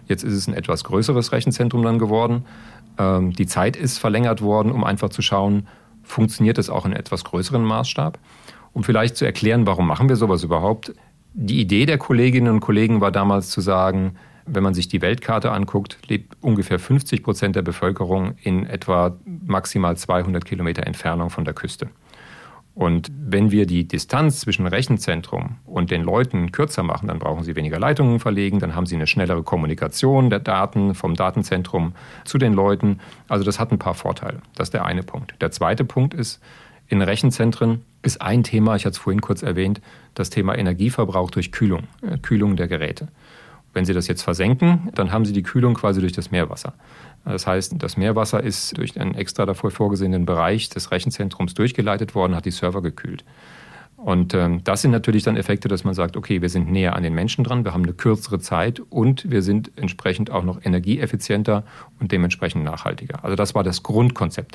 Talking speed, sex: 185 wpm, male